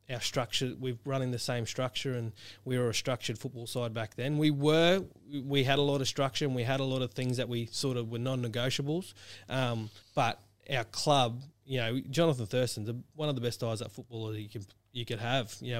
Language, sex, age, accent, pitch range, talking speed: English, male, 20-39, Australian, 115-130 Hz, 215 wpm